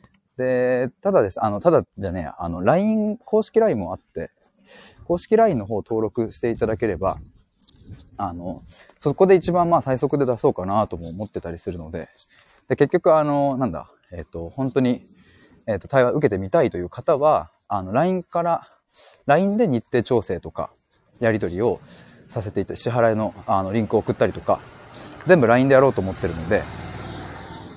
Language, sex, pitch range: Japanese, male, 95-140 Hz